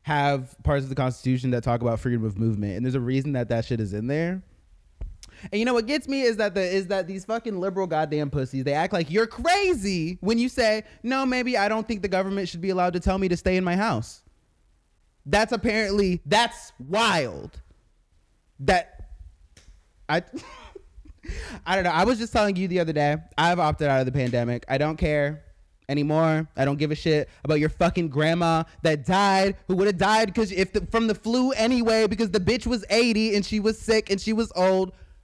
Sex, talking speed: male, 210 wpm